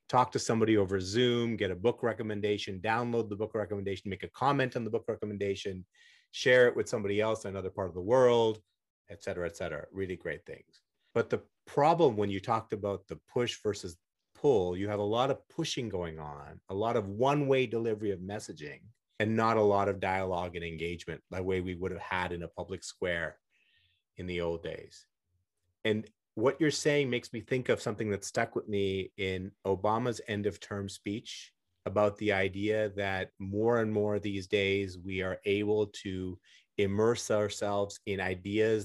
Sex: male